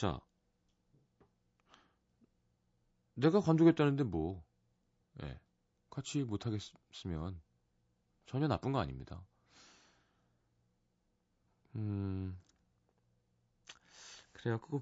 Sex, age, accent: male, 30-49, native